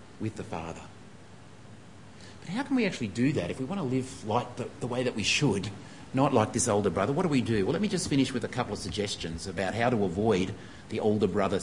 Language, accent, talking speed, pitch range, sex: English, Australian, 250 wpm, 100-140 Hz, male